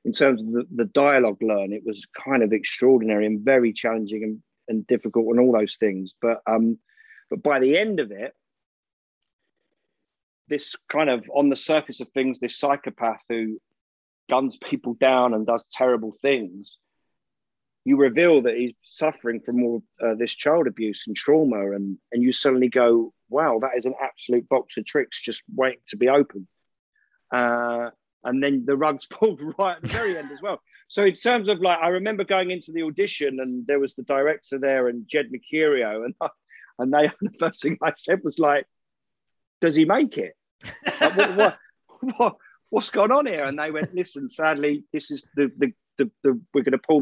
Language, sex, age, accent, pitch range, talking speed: English, male, 40-59, British, 120-155 Hz, 190 wpm